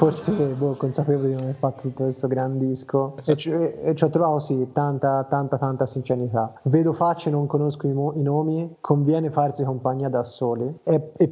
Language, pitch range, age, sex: Italian, 135-155 Hz, 20-39, male